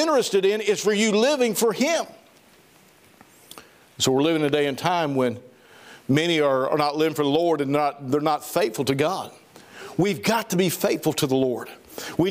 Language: English